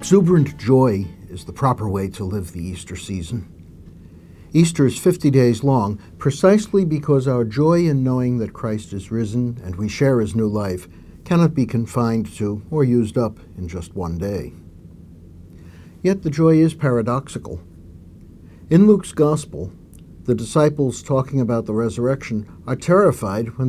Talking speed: 150 wpm